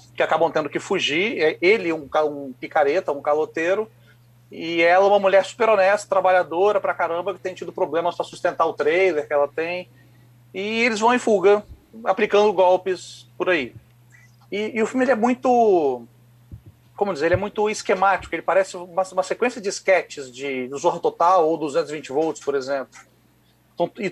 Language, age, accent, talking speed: Portuguese, 40-59, Brazilian, 170 wpm